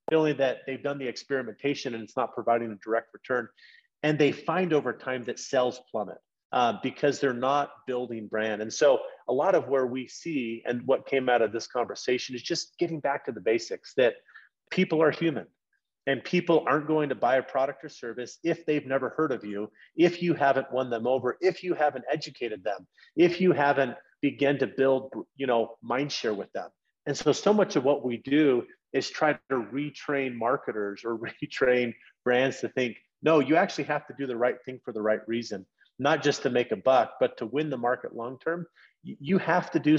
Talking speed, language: 210 wpm, English